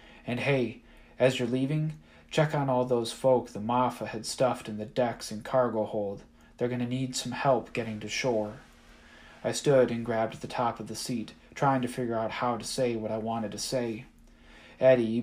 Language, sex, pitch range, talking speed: English, male, 110-125 Hz, 200 wpm